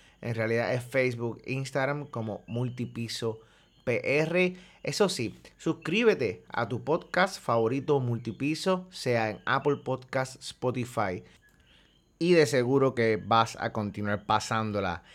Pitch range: 115-145 Hz